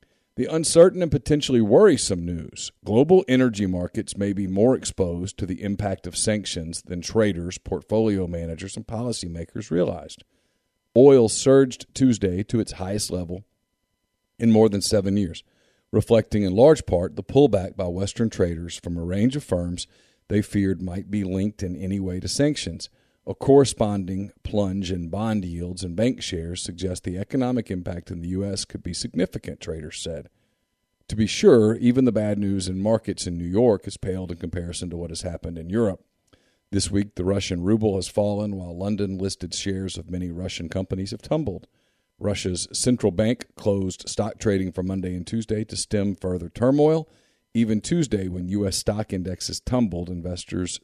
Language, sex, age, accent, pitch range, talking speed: English, male, 50-69, American, 90-110 Hz, 170 wpm